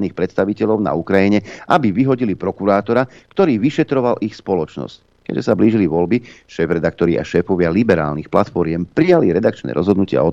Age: 50-69